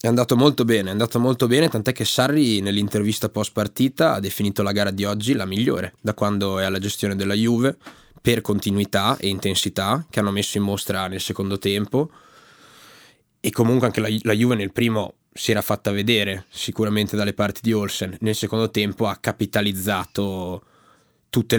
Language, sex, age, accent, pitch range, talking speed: Italian, male, 20-39, native, 100-115 Hz, 180 wpm